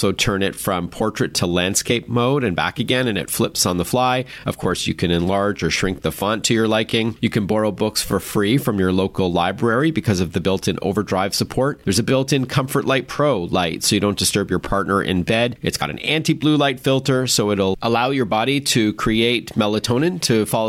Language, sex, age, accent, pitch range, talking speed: English, male, 40-59, American, 100-135 Hz, 220 wpm